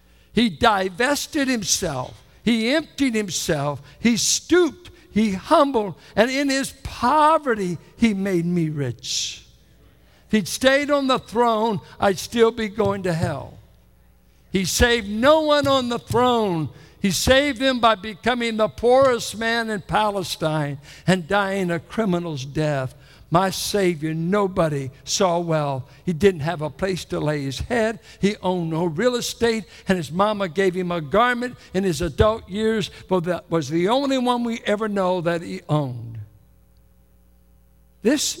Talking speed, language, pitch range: 145 wpm, English, 145-220 Hz